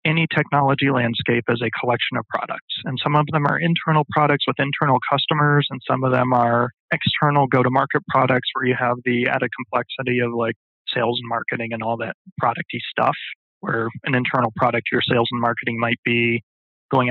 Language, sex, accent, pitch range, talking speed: English, male, American, 120-145 Hz, 185 wpm